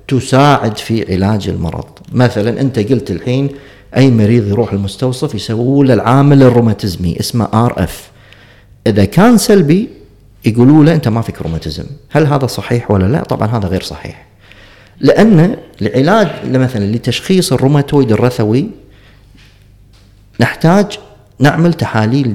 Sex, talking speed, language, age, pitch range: male, 115 wpm, Arabic, 50-69, 105-140 Hz